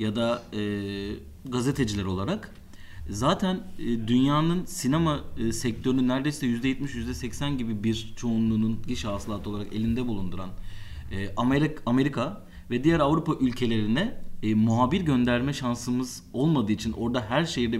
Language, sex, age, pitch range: Turkish, male, 30-49, 100-140 Hz